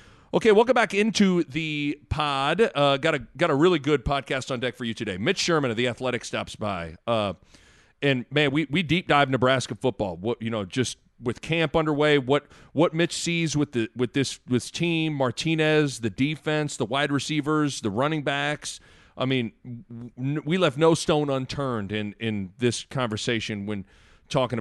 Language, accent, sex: English, American, male